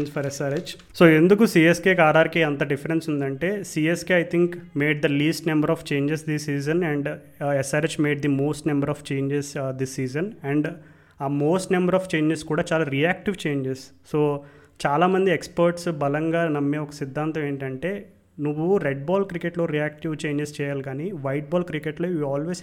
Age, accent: 30-49, native